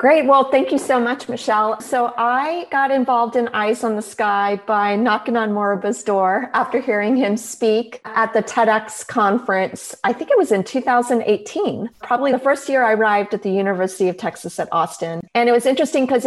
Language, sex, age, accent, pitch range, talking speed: English, female, 40-59, American, 210-260 Hz, 195 wpm